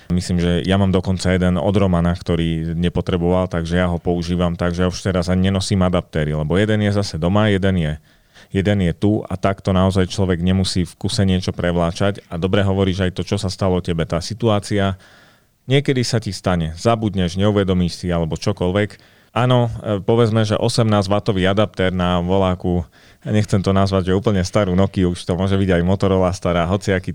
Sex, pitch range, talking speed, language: male, 90-105 Hz, 180 wpm, Slovak